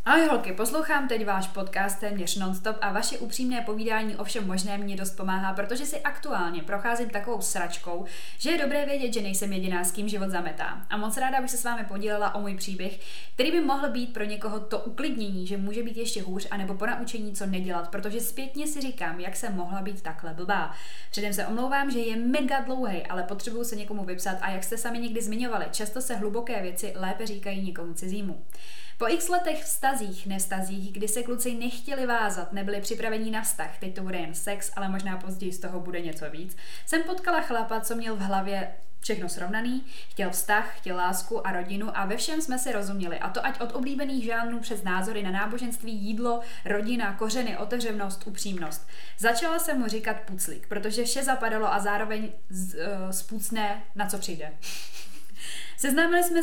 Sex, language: female, Czech